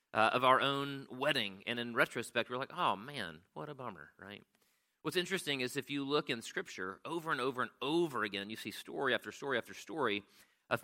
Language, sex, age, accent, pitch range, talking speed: English, male, 40-59, American, 110-140 Hz, 210 wpm